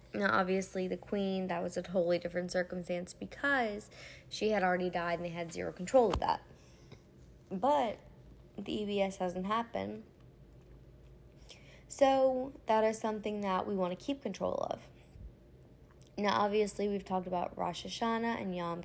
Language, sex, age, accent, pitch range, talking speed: English, female, 20-39, American, 180-210 Hz, 150 wpm